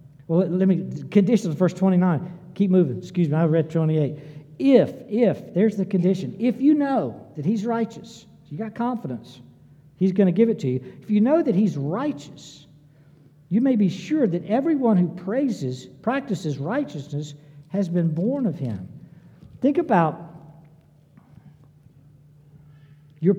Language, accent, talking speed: English, American, 150 wpm